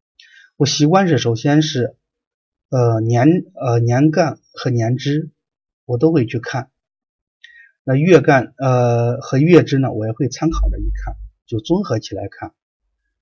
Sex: male